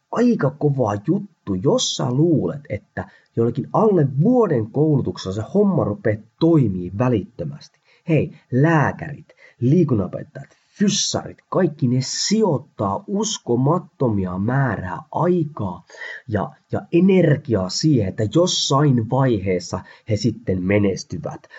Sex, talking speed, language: male, 95 wpm, Finnish